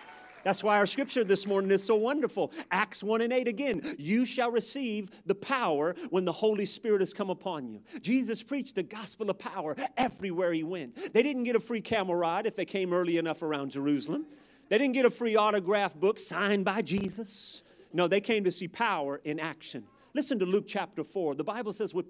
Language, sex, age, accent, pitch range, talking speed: English, male, 40-59, American, 185-240 Hz, 210 wpm